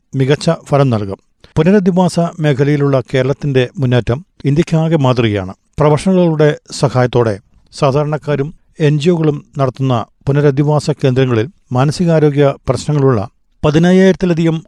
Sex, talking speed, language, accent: male, 75 wpm, Malayalam, native